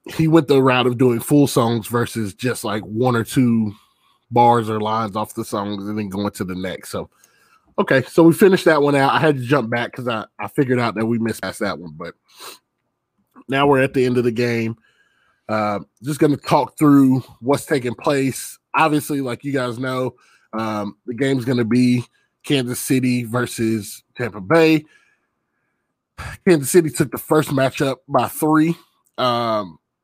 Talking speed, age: 185 wpm, 20-39